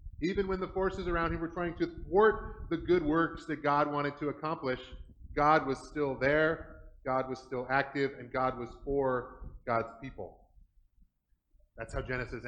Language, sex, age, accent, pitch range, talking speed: English, male, 30-49, American, 130-165 Hz, 170 wpm